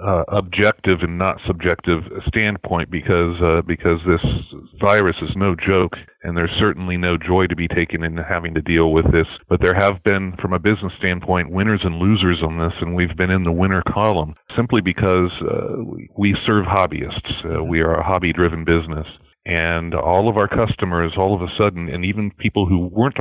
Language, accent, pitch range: English, American, 85-95 Hz